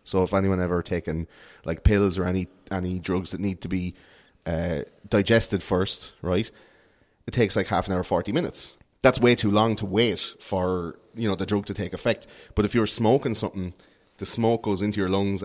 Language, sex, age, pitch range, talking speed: English, male, 30-49, 95-135 Hz, 200 wpm